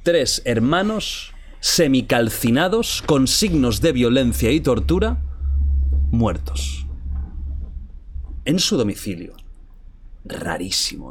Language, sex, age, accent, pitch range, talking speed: Spanish, male, 30-49, Spanish, 90-125 Hz, 75 wpm